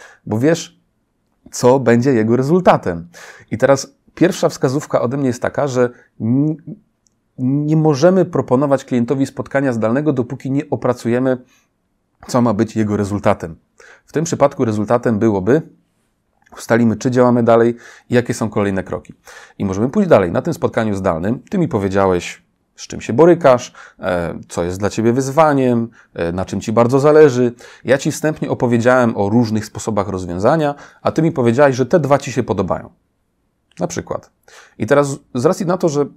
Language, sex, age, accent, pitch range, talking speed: Polish, male, 30-49, native, 110-140 Hz, 160 wpm